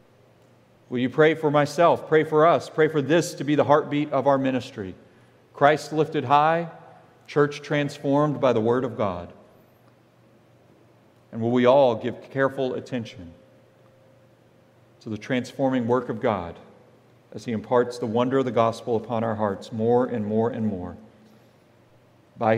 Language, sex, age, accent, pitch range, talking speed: English, male, 40-59, American, 115-140 Hz, 155 wpm